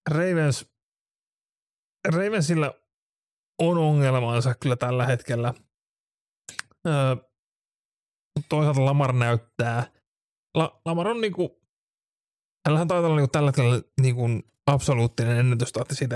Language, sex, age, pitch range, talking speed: Finnish, male, 30-49, 120-145 Hz, 80 wpm